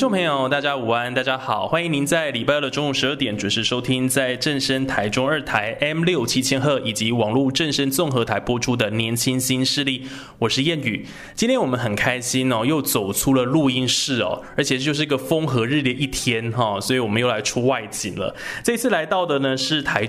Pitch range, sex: 115-145 Hz, male